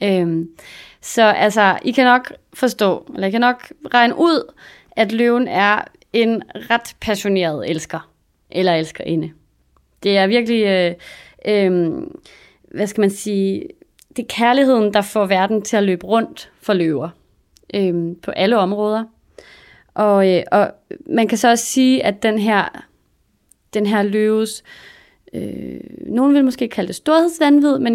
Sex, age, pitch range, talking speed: female, 30-49, 195-255 Hz, 150 wpm